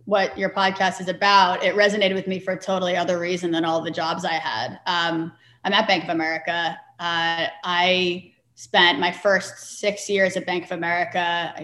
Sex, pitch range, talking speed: female, 165-190 Hz, 195 wpm